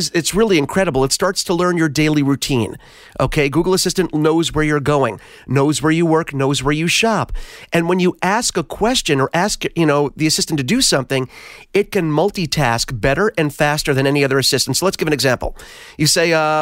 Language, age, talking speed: English, 40-59, 210 wpm